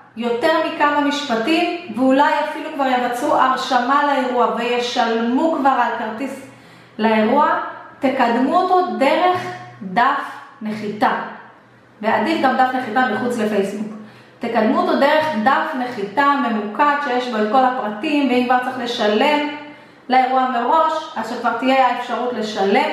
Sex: female